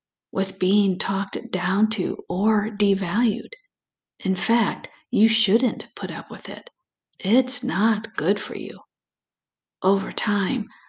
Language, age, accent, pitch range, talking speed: English, 50-69, American, 190-225 Hz, 120 wpm